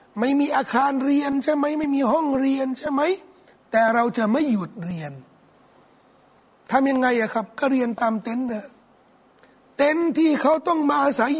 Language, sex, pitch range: Thai, male, 235-290 Hz